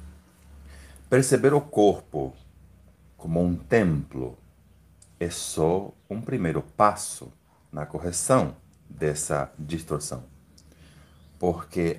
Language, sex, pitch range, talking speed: Portuguese, male, 75-100 Hz, 80 wpm